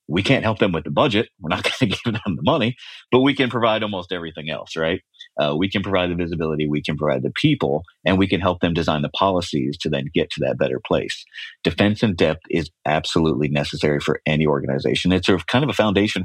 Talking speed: 240 wpm